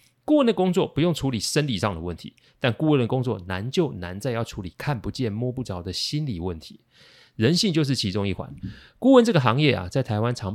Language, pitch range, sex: Chinese, 100-145 Hz, male